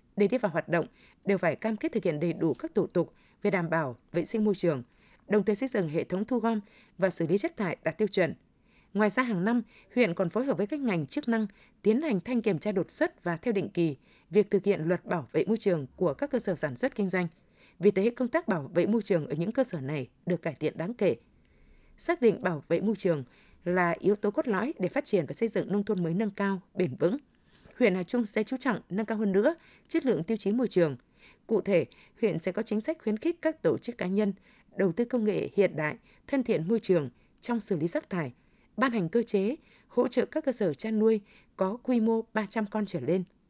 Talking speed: 255 wpm